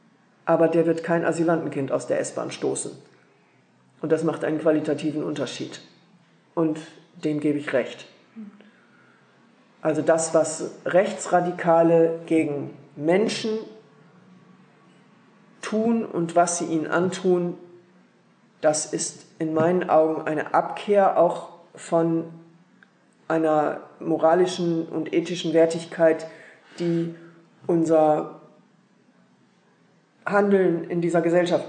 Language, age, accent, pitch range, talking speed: German, 50-69, German, 160-180 Hz, 100 wpm